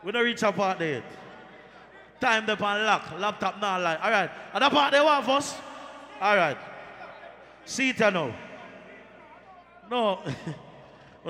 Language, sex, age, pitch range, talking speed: English, male, 30-49, 205-280 Hz, 140 wpm